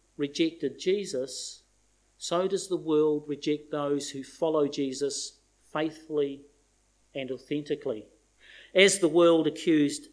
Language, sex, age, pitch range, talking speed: English, male, 50-69, 145-195 Hz, 105 wpm